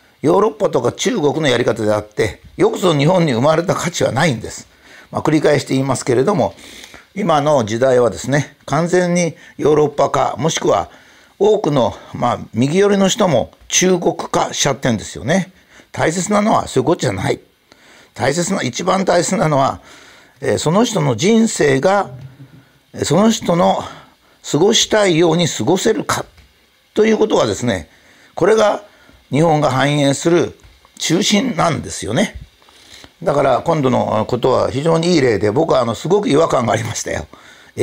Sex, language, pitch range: male, Japanese, 130-195 Hz